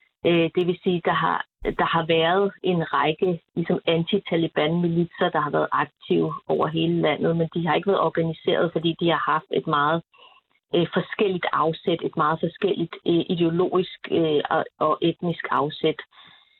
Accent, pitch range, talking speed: native, 160-185 Hz, 150 wpm